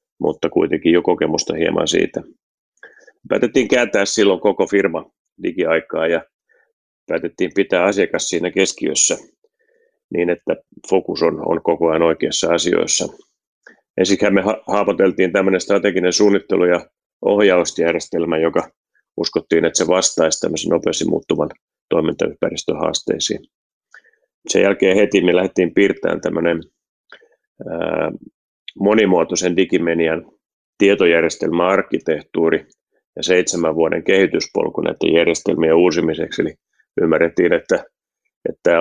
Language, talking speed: Finnish, 105 wpm